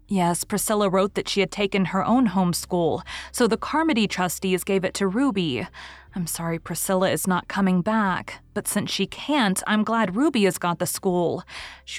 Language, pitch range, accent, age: English, 175-215 Hz, American, 20-39